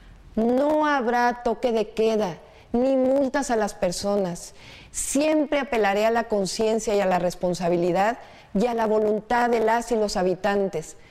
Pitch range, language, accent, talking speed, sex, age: 185-240 Hz, Spanish, Mexican, 150 wpm, female, 40-59